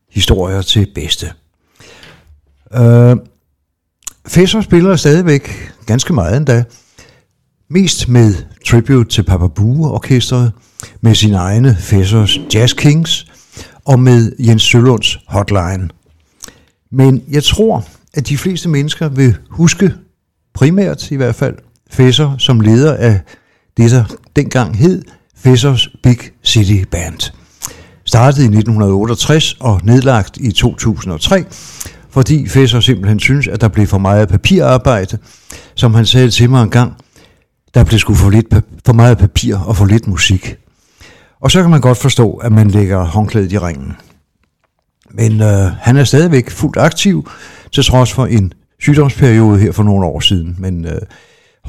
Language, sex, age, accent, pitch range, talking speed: Danish, male, 60-79, native, 100-135 Hz, 135 wpm